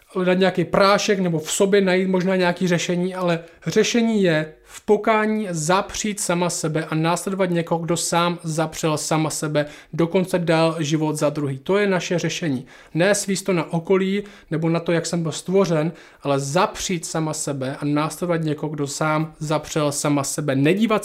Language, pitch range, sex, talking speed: Czech, 155-185 Hz, male, 170 wpm